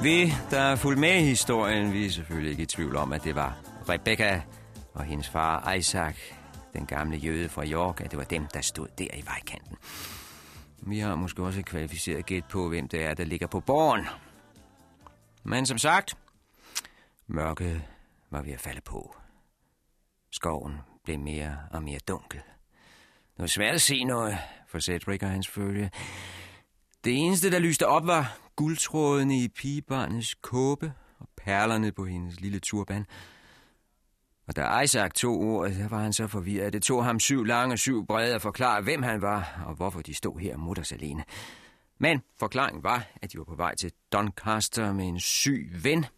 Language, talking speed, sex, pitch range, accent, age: Danish, 180 wpm, male, 80-115 Hz, native, 40-59